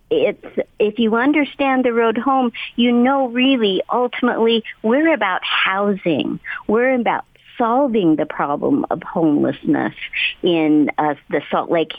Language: English